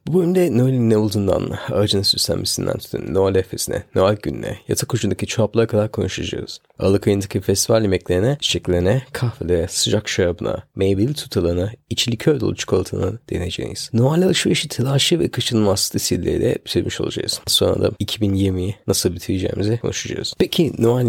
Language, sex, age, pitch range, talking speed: Turkish, male, 30-49, 100-125 Hz, 140 wpm